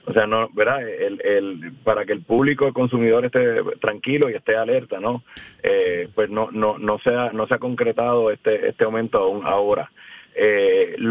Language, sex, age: Spanish, male, 30-49